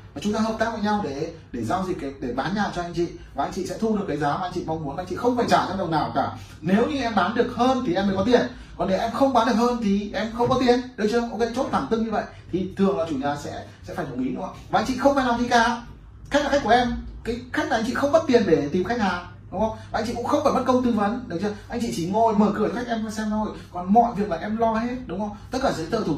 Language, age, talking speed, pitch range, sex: Vietnamese, 20-39, 340 wpm, 175-235 Hz, male